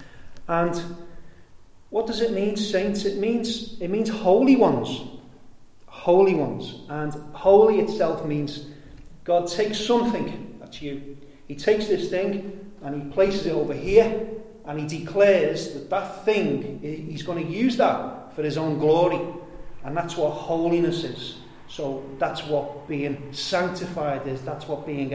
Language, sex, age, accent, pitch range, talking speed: English, male, 40-59, British, 150-200 Hz, 150 wpm